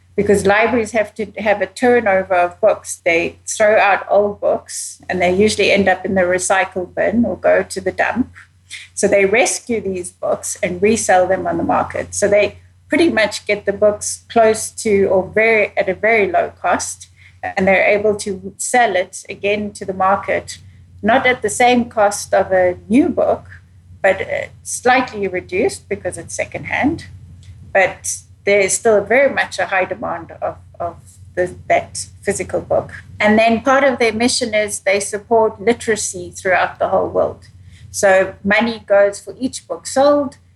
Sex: female